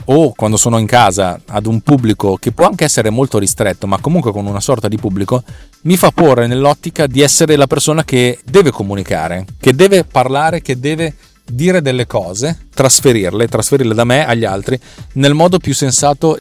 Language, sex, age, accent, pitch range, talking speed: Italian, male, 30-49, native, 105-140 Hz, 185 wpm